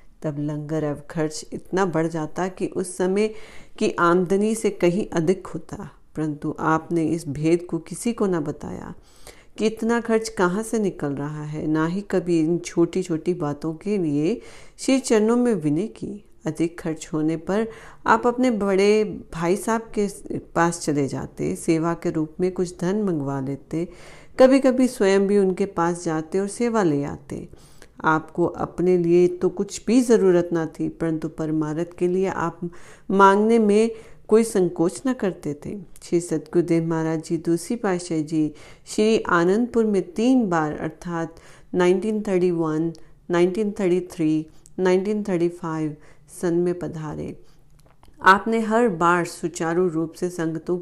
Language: Hindi